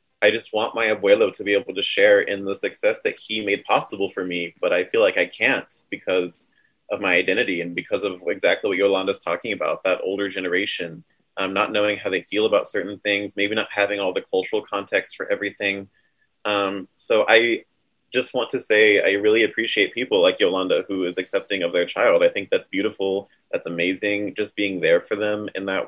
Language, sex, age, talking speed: English, male, 20-39, 210 wpm